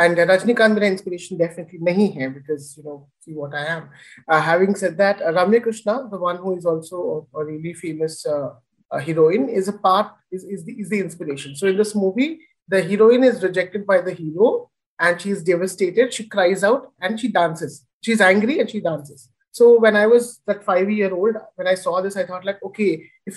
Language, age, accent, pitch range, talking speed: Hindi, 30-49, native, 165-205 Hz, 220 wpm